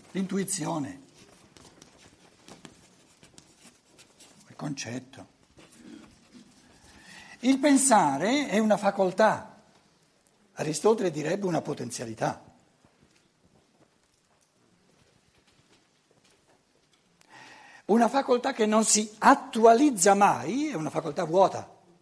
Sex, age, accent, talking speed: male, 60-79, native, 65 wpm